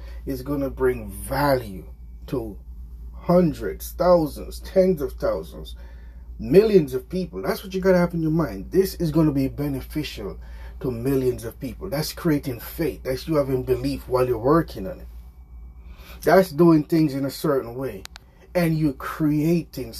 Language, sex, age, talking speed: English, male, 30-49, 160 wpm